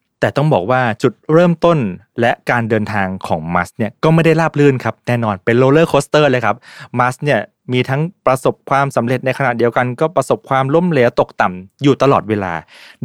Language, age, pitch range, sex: Thai, 20-39, 105-135 Hz, male